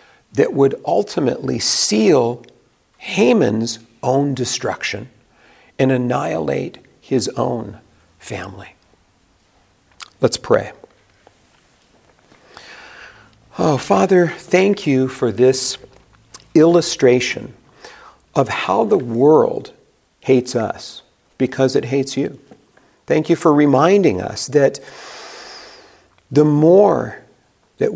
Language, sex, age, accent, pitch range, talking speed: English, male, 50-69, American, 115-140 Hz, 85 wpm